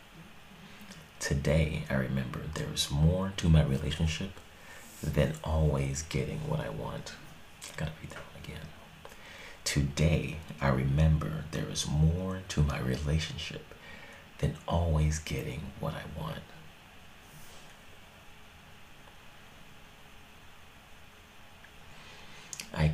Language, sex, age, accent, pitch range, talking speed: English, male, 40-59, American, 75-80 Hz, 90 wpm